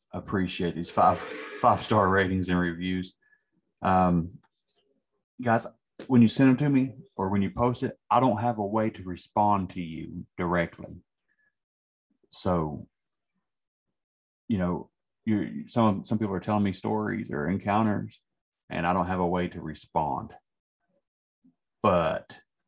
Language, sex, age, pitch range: English, male, 30-49, 90-105 Hz